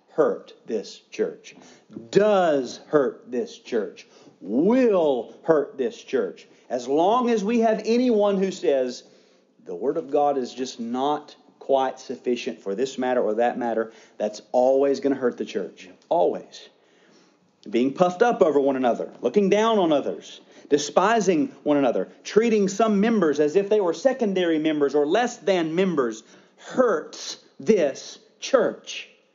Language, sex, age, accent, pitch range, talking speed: English, male, 40-59, American, 150-240 Hz, 145 wpm